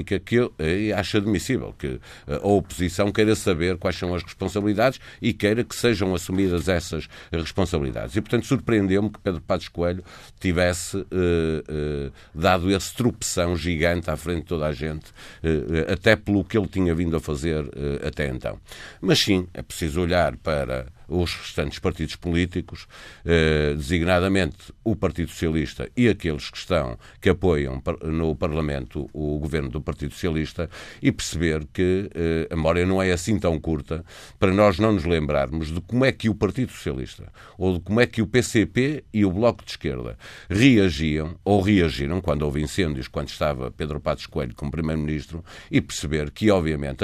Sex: male